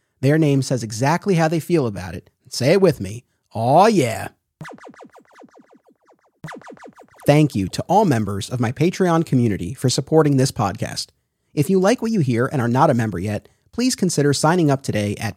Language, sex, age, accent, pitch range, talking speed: English, male, 30-49, American, 120-165 Hz, 180 wpm